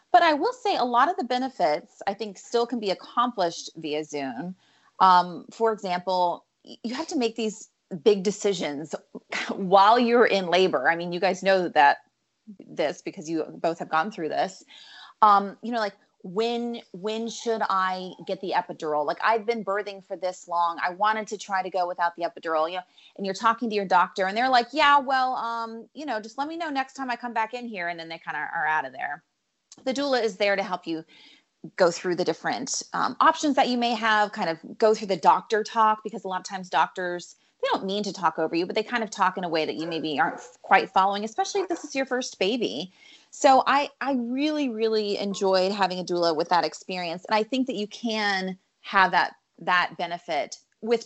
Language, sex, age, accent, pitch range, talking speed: English, female, 30-49, American, 180-235 Hz, 220 wpm